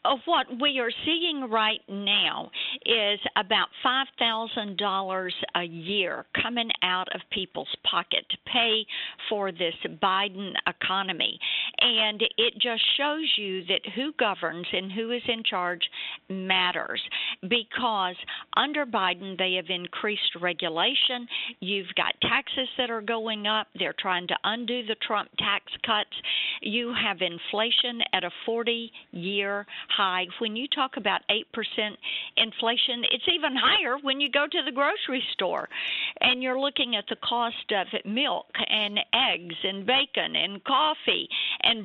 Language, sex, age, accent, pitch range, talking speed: English, female, 50-69, American, 195-255 Hz, 140 wpm